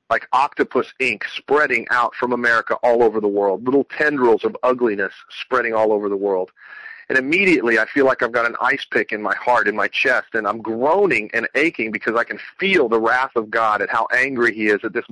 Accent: American